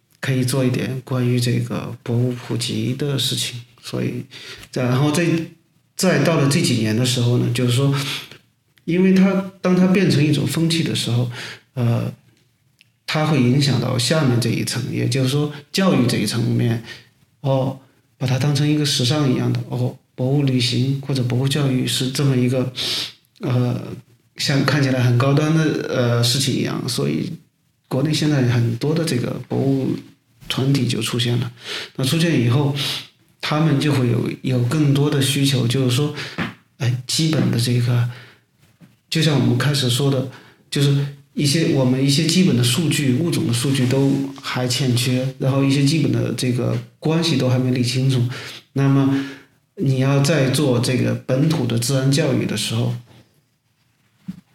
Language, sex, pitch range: Chinese, male, 125-145 Hz